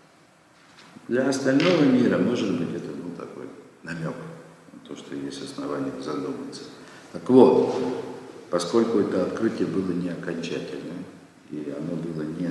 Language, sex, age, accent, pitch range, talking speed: Russian, male, 50-69, native, 85-130 Hz, 125 wpm